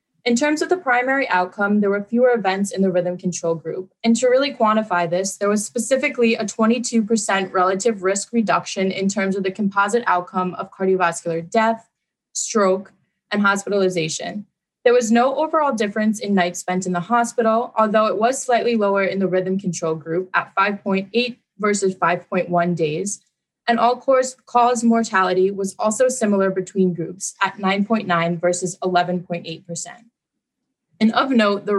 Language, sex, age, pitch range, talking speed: English, female, 20-39, 185-230 Hz, 155 wpm